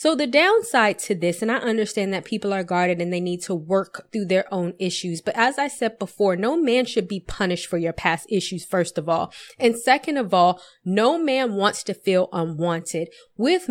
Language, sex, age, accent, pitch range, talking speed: English, female, 20-39, American, 180-220 Hz, 215 wpm